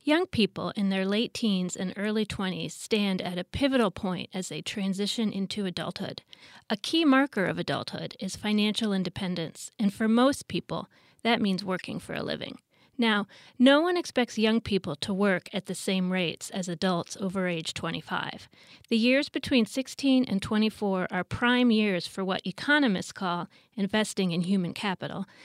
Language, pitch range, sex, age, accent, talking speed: English, 185-225 Hz, female, 30-49, American, 165 wpm